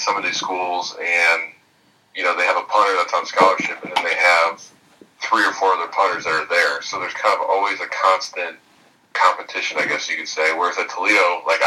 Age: 30-49